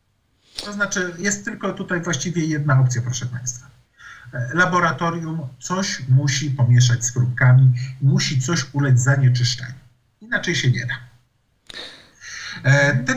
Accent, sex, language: native, male, Polish